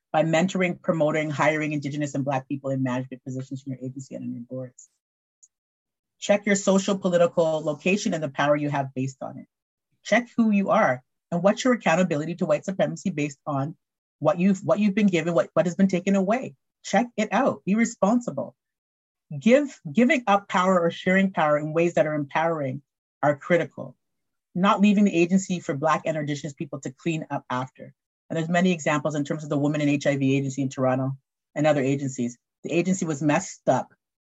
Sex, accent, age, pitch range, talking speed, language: female, American, 40-59, 140-195 Hz, 195 wpm, English